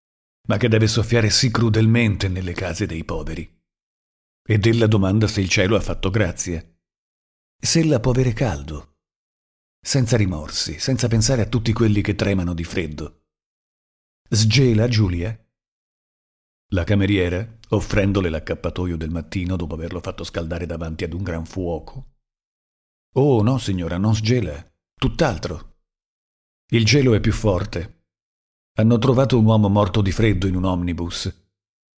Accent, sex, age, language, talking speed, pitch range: native, male, 50-69, Italian, 135 wpm, 85-115 Hz